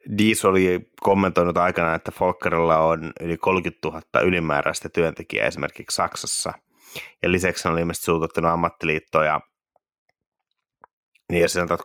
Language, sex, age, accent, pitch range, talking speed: Finnish, male, 30-49, native, 80-90 Hz, 120 wpm